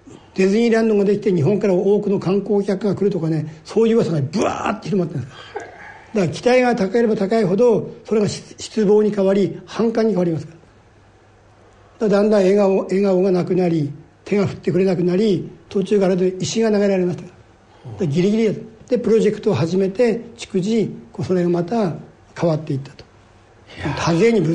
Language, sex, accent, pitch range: Japanese, male, native, 155-215 Hz